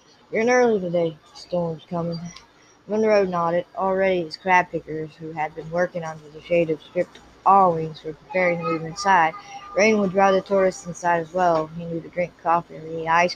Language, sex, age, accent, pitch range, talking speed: English, female, 20-39, American, 160-190 Hz, 200 wpm